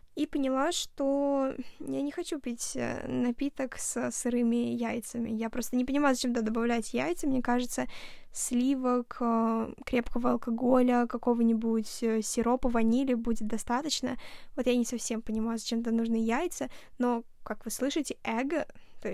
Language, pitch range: Russian, 235-270 Hz